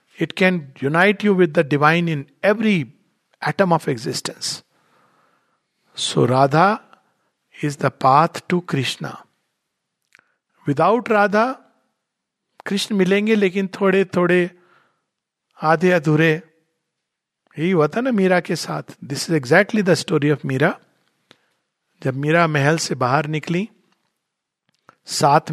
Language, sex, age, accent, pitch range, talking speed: Hindi, male, 50-69, native, 150-195 Hz, 110 wpm